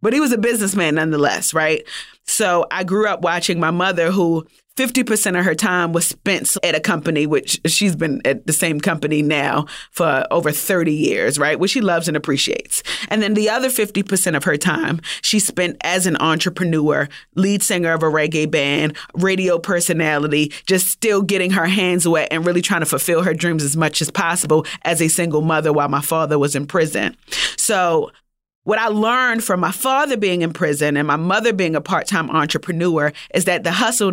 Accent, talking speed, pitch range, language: American, 195 wpm, 160-205 Hz, English